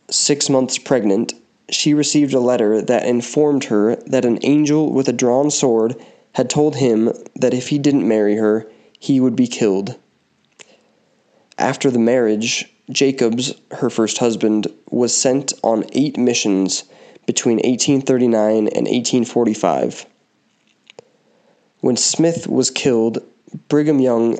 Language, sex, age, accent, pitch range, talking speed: English, male, 20-39, American, 115-135 Hz, 130 wpm